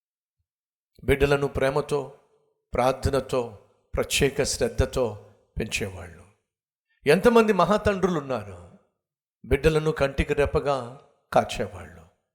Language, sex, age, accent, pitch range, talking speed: Telugu, male, 50-69, native, 125-180 Hz, 65 wpm